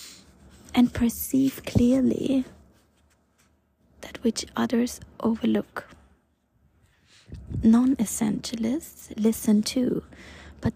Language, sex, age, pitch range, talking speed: English, female, 20-39, 200-235 Hz, 60 wpm